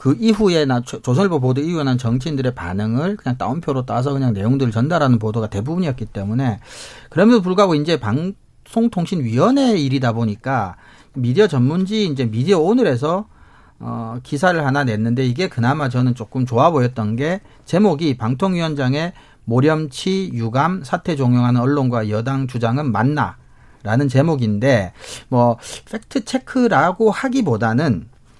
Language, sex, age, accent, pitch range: Korean, male, 40-59, native, 120-175 Hz